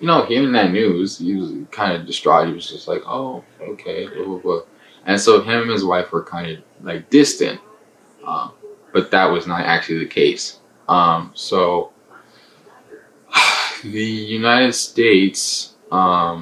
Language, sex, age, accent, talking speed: English, male, 20-39, American, 165 wpm